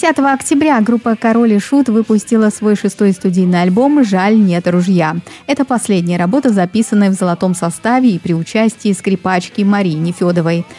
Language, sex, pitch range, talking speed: Russian, female, 180-240 Hz, 150 wpm